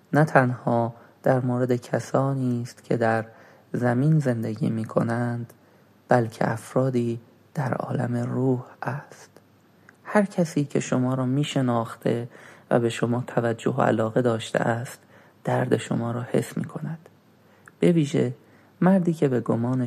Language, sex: Persian, male